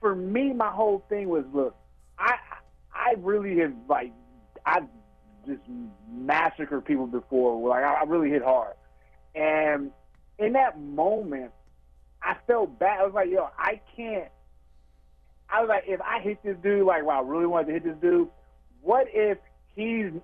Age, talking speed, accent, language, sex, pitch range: 30-49, 165 wpm, American, English, male, 145-205 Hz